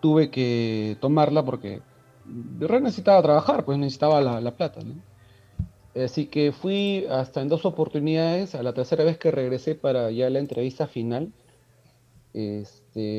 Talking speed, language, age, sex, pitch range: 150 wpm, Spanish, 30-49, male, 115-150 Hz